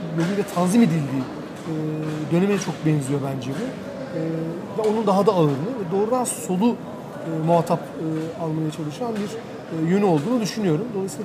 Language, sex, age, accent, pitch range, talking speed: Turkish, male, 40-59, native, 160-210 Hz, 130 wpm